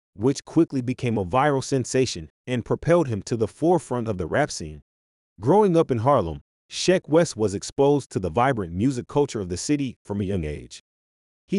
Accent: American